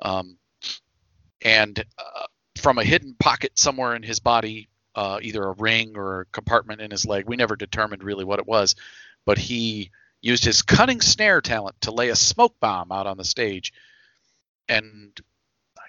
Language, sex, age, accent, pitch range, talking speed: English, male, 40-59, American, 105-125 Hz, 170 wpm